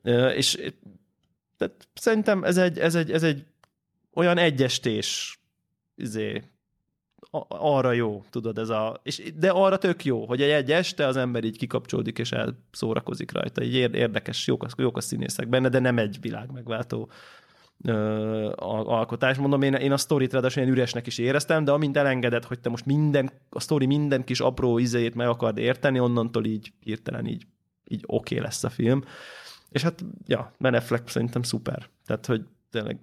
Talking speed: 170 wpm